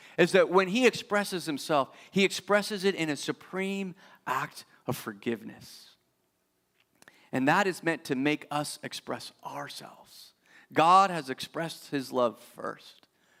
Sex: male